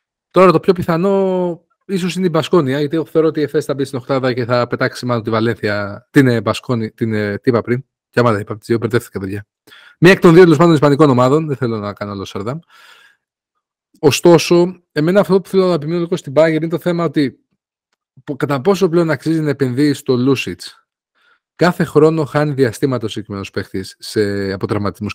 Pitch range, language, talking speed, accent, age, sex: 110-165 Hz, Greek, 190 wpm, native, 30-49, male